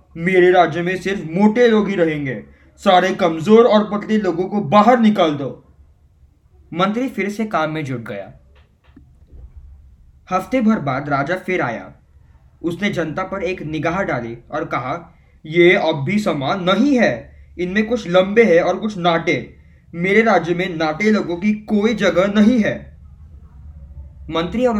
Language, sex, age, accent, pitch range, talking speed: Hindi, male, 20-39, native, 110-185 Hz, 150 wpm